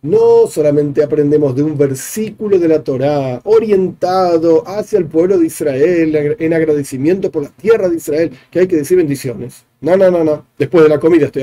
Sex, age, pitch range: male, 40-59, 140-190 Hz